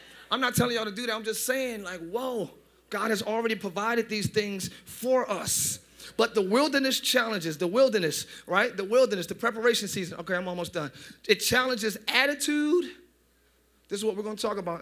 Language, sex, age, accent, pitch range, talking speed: English, male, 30-49, American, 180-245 Hz, 190 wpm